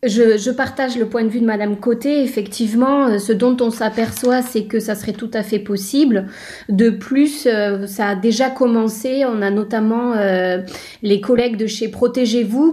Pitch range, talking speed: 205-245 Hz, 175 wpm